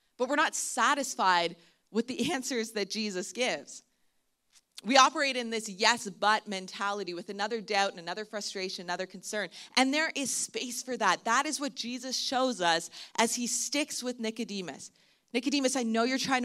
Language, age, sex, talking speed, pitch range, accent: English, 30-49, female, 170 wpm, 200-260 Hz, American